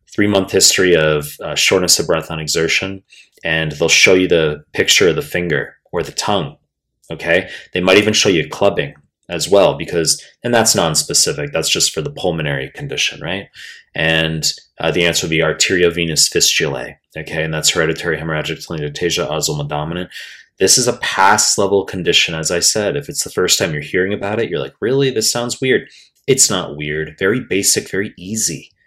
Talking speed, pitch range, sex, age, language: 180 wpm, 85-120 Hz, male, 30-49, English